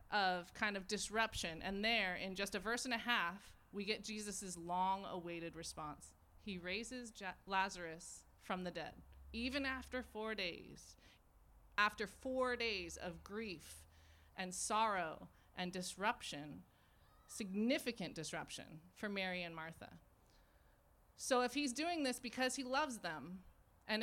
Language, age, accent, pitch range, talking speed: English, 30-49, American, 180-240 Hz, 130 wpm